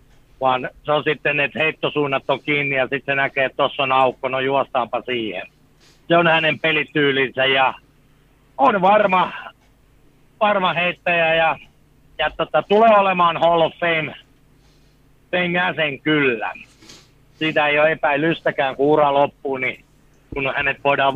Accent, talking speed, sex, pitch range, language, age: native, 135 wpm, male, 140-170 Hz, Finnish, 60-79